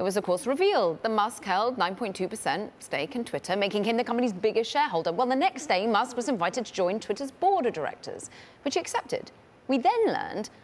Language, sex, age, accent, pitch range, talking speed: English, female, 30-49, British, 160-220 Hz, 210 wpm